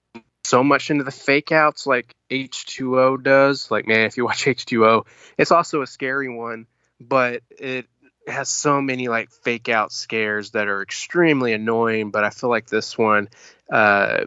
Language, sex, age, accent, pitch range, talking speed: English, male, 20-39, American, 110-130 Hz, 170 wpm